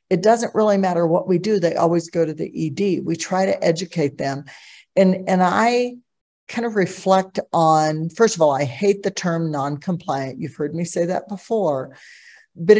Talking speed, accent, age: 190 wpm, American, 50-69